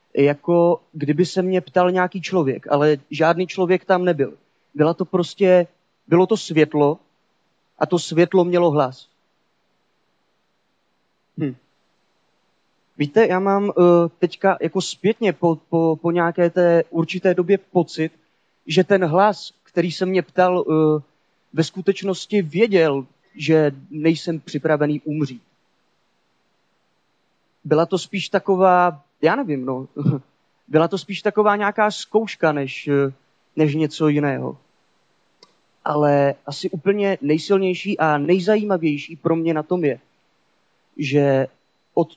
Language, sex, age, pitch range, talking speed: Czech, male, 30-49, 150-185 Hz, 120 wpm